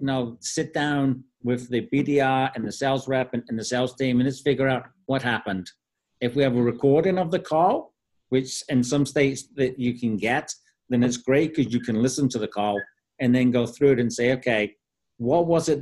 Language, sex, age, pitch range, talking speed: English, male, 50-69, 115-135 Hz, 220 wpm